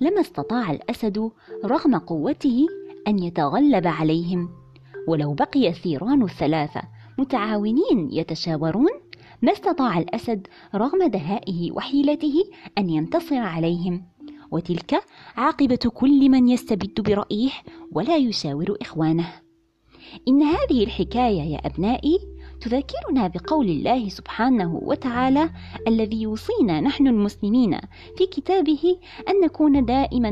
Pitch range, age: 165-275 Hz, 20-39